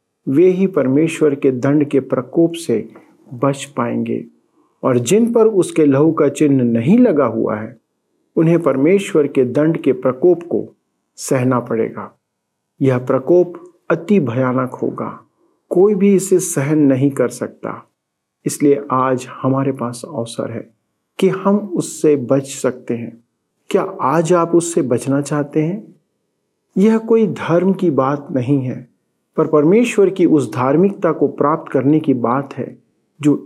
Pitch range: 130-170 Hz